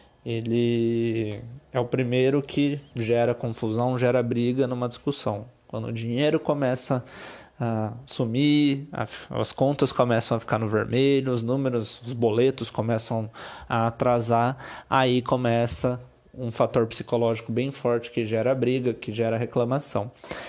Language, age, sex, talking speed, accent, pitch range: Portuguese, 20-39, male, 130 wpm, Brazilian, 115-135 Hz